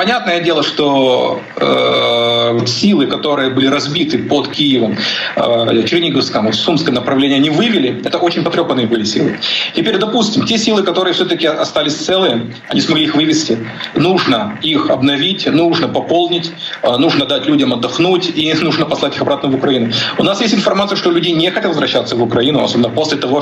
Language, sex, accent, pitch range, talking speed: Ukrainian, male, native, 125-185 Hz, 170 wpm